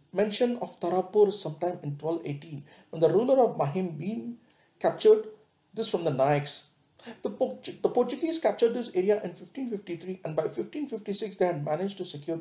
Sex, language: male, English